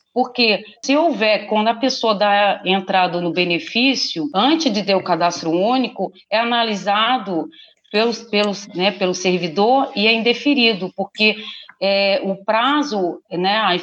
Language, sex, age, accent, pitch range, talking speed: Portuguese, female, 40-59, Brazilian, 190-235 Hz, 120 wpm